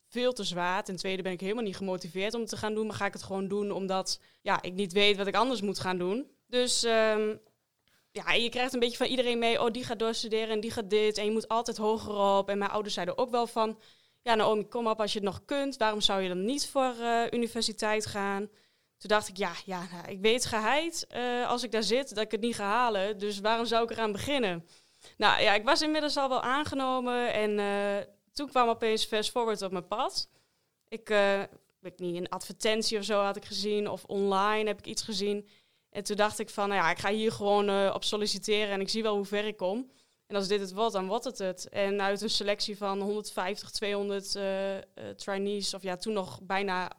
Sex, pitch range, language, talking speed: female, 195-225 Hz, Dutch, 240 wpm